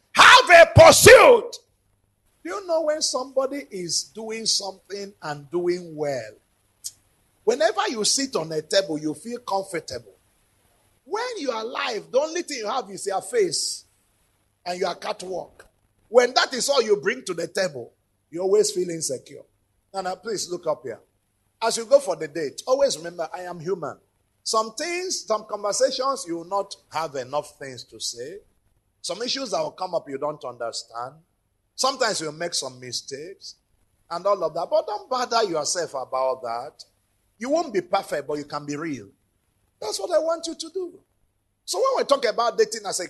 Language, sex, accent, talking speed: English, male, Nigerian, 180 wpm